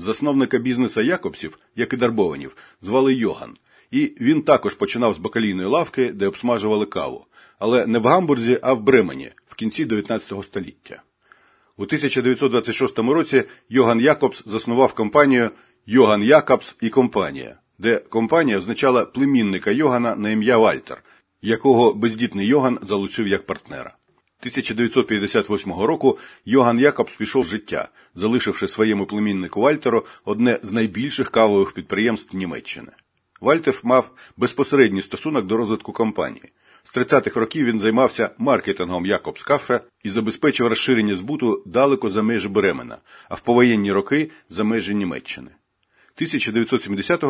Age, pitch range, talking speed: 50-69, 105-130 Hz, 130 wpm